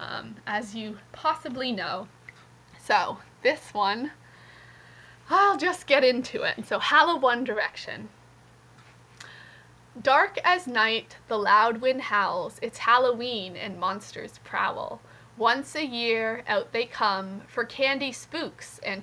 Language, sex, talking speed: English, female, 125 wpm